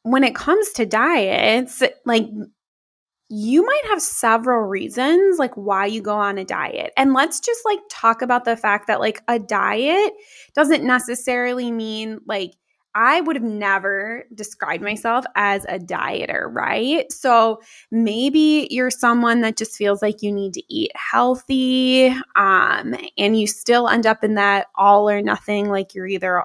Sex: female